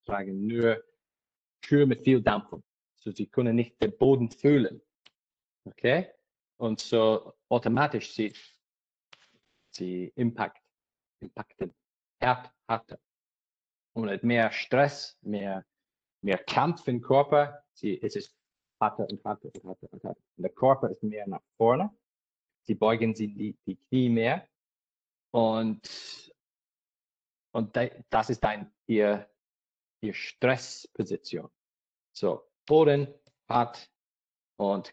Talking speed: 110 wpm